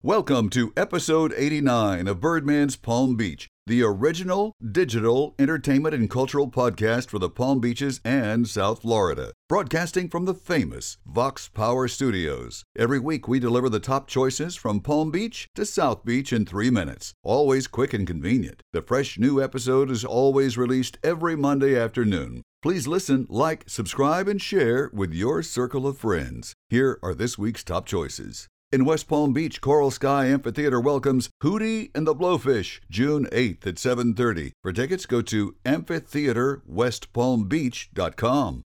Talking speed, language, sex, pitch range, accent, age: 150 wpm, English, male, 115-145 Hz, American, 60-79